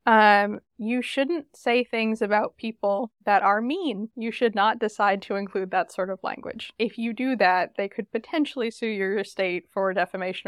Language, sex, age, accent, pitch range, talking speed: English, female, 20-39, American, 190-230 Hz, 185 wpm